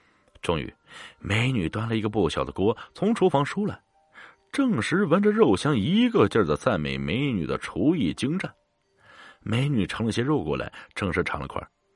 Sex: male